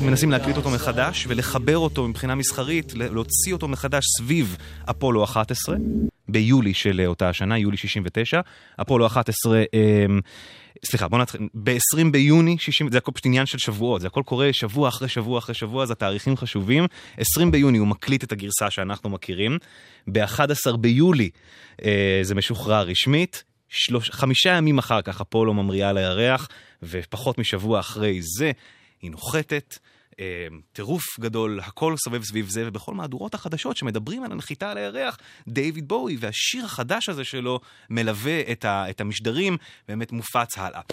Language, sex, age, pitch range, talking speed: Hebrew, male, 20-39, 95-135 Hz, 145 wpm